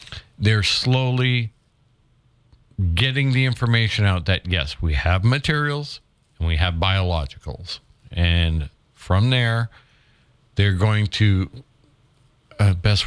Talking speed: 105 wpm